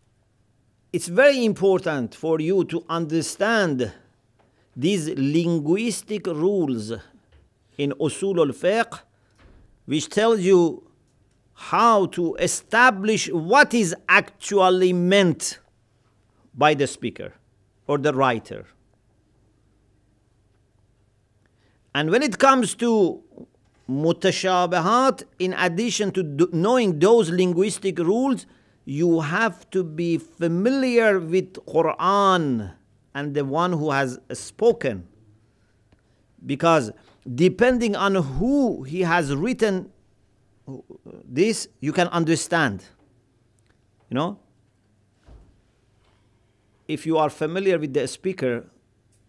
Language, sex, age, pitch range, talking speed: English, male, 50-69, 110-185 Hz, 90 wpm